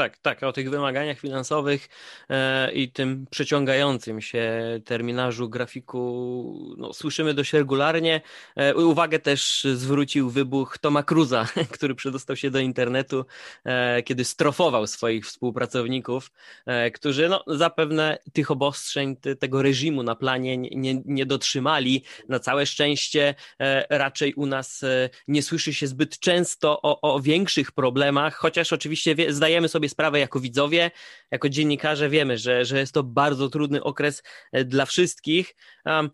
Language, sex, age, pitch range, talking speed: Polish, male, 20-39, 130-160 Hz, 140 wpm